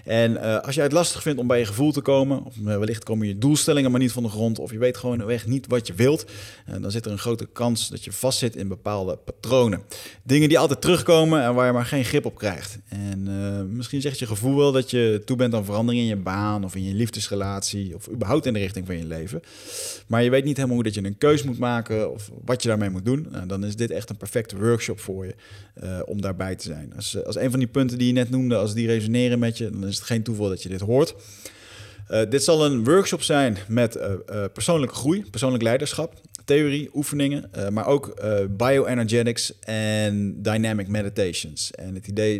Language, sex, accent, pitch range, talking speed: Dutch, male, Dutch, 100-130 Hz, 240 wpm